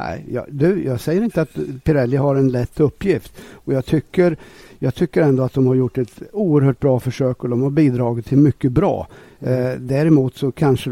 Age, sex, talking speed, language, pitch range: 60-79, male, 175 wpm, Swedish, 120-140 Hz